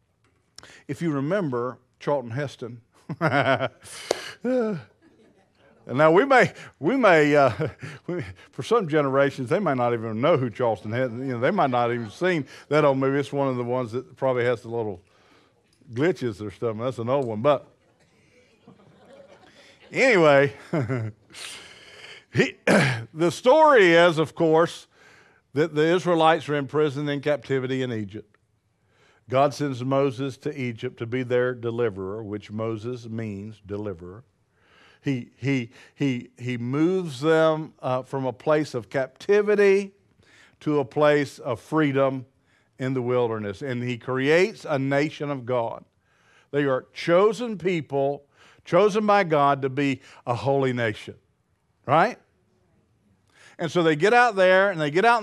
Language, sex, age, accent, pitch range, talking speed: English, male, 50-69, American, 120-160 Hz, 140 wpm